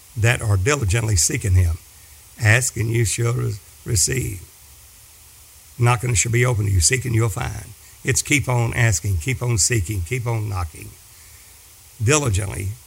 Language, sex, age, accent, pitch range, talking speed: English, male, 60-79, American, 100-125 Hz, 145 wpm